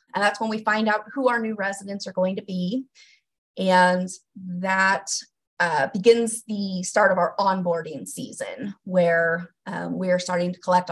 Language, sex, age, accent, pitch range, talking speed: English, female, 20-39, American, 175-225 Hz, 170 wpm